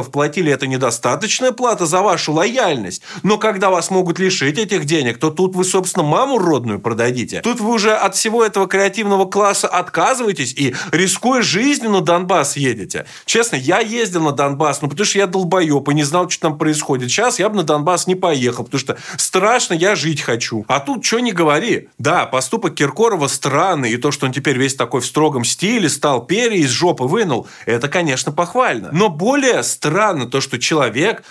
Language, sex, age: Russian, male, 20-39